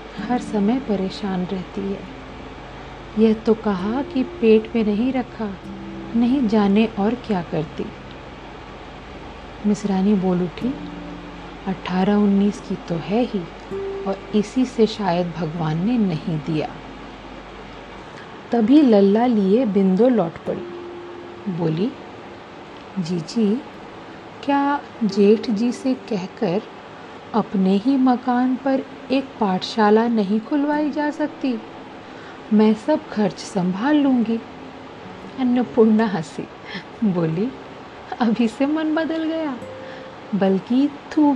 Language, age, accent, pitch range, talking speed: Hindi, 50-69, native, 190-245 Hz, 110 wpm